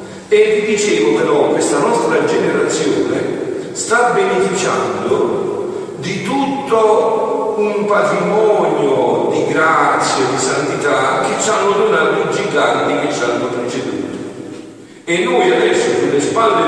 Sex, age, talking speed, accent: male, 50-69, 115 wpm, native